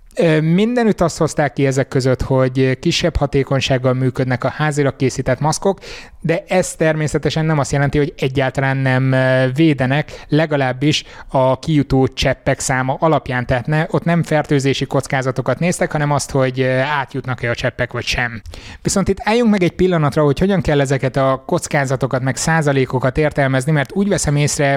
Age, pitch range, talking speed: 20-39, 130-155 Hz, 155 wpm